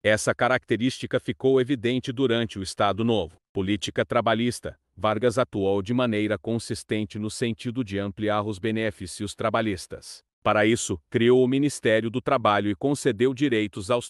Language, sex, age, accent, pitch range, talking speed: Portuguese, male, 40-59, Brazilian, 105-125 Hz, 140 wpm